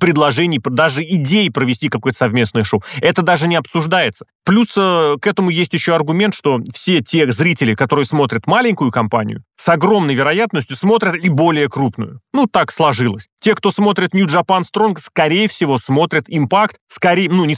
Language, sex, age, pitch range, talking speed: Russian, male, 30-49, 135-195 Hz, 165 wpm